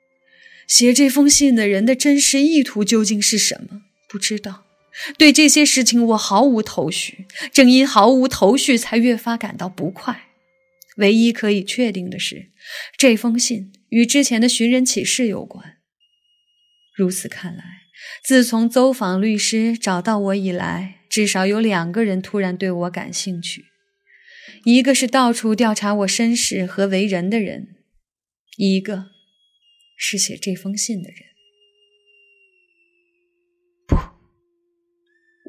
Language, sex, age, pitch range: Chinese, female, 20-39, 195-260 Hz